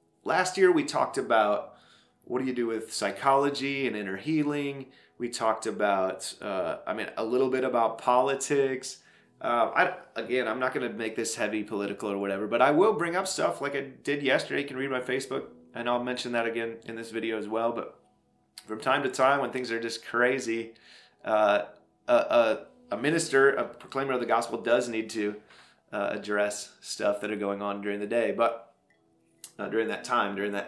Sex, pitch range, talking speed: male, 110-140 Hz, 195 wpm